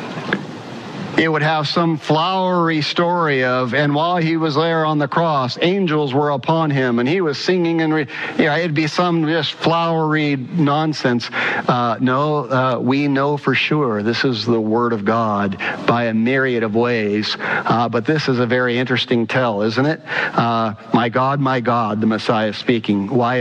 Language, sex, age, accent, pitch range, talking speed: English, male, 50-69, American, 115-150 Hz, 180 wpm